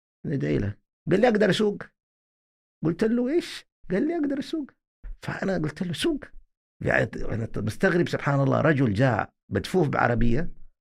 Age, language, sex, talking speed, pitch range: 50-69, Arabic, male, 135 wpm, 95-140 Hz